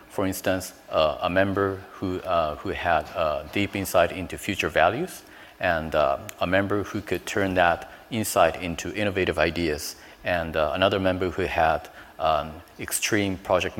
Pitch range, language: 85-100 Hz, English